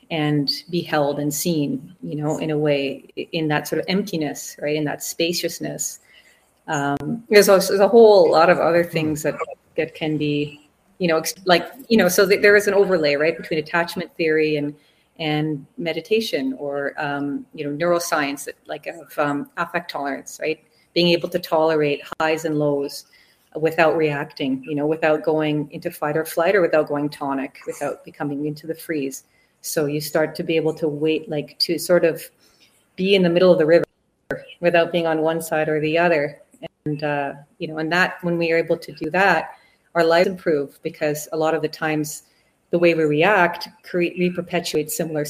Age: 30-49